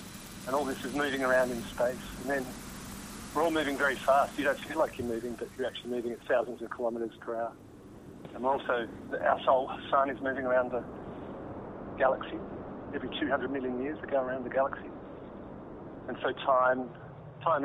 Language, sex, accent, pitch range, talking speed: English, male, British, 120-135 Hz, 185 wpm